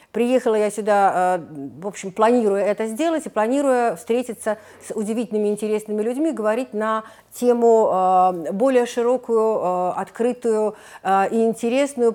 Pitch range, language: 195-235 Hz, Russian